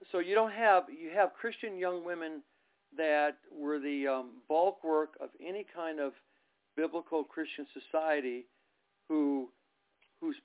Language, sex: English, male